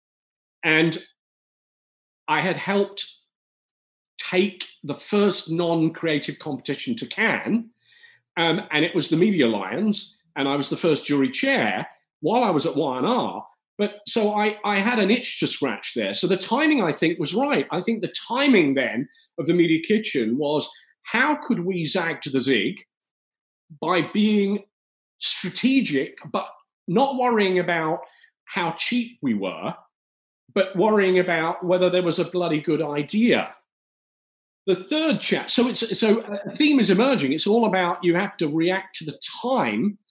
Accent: British